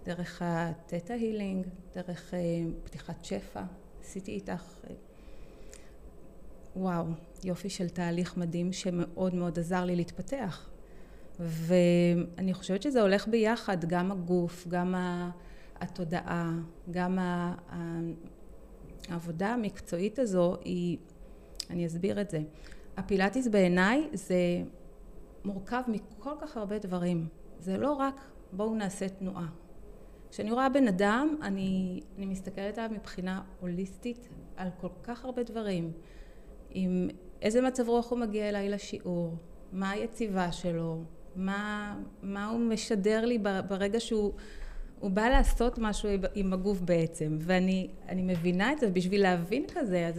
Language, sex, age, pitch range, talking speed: Hebrew, female, 30-49, 175-215 Hz, 120 wpm